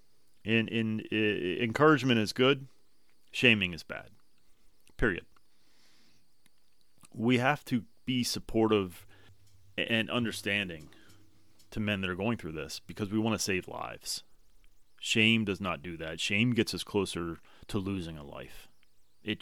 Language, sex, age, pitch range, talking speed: English, male, 30-49, 90-110 Hz, 135 wpm